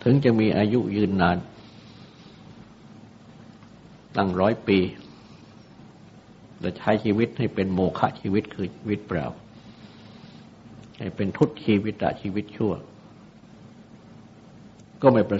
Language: Thai